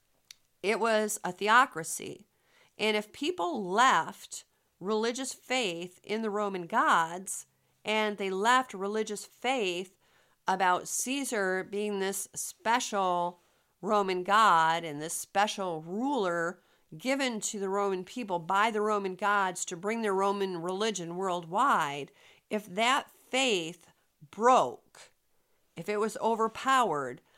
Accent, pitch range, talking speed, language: American, 185-230 Hz, 115 wpm, English